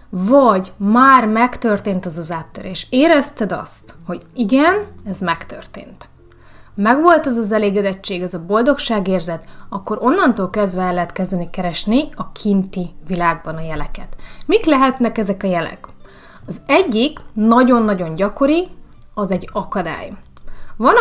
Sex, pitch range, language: female, 180-245 Hz, Hungarian